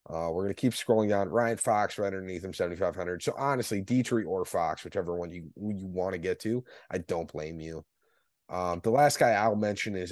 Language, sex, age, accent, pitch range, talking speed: English, male, 20-39, American, 90-120 Hz, 220 wpm